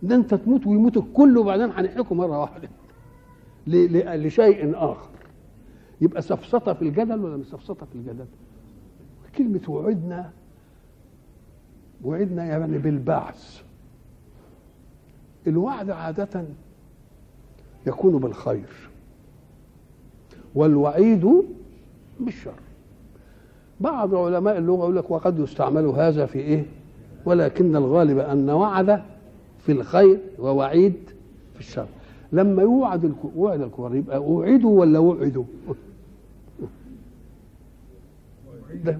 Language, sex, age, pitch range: Arabic, male, 60-79, 135-195 Hz